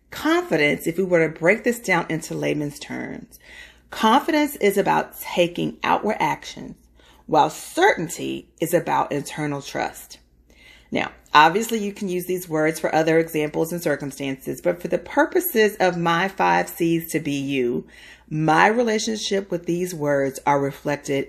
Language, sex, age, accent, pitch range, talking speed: English, female, 40-59, American, 140-195 Hz, 150 wpm